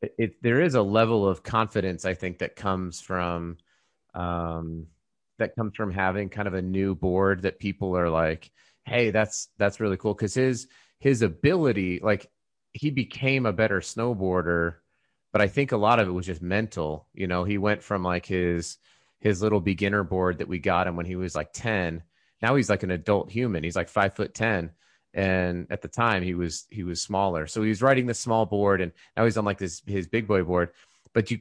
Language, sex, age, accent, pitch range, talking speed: English, male, 30-49, American, 90-115 Hz, 210 wpm